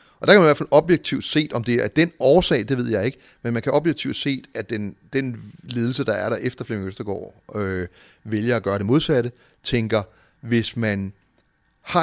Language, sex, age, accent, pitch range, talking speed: Danish, male, 30-49, native, 105-140 Hz, 220 wpm